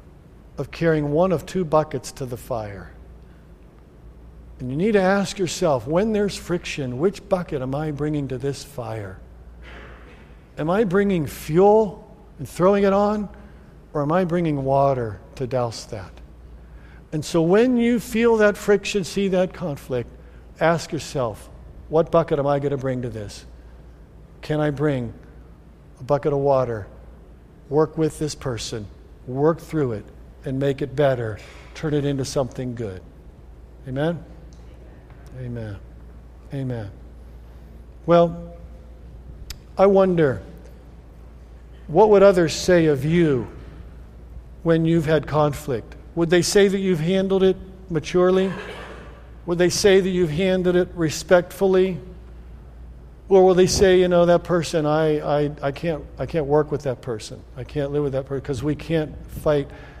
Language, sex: English, male